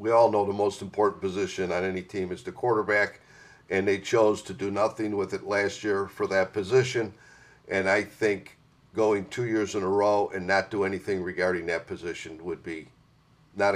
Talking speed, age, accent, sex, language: 195 wpm, 50-69, American, male, English